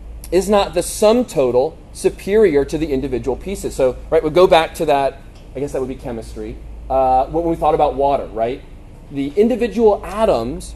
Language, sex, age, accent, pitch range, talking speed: English, male, 30-49, American, 130-185 Hz, 185 wpm